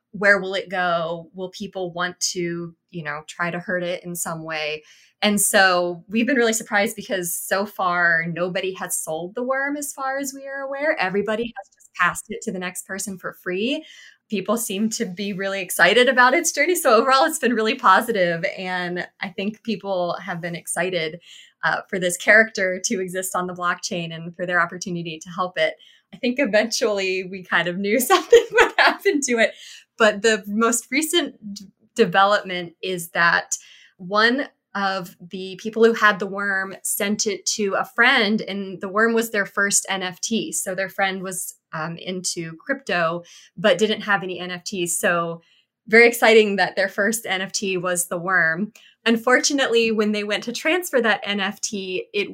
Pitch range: 180-225 Hz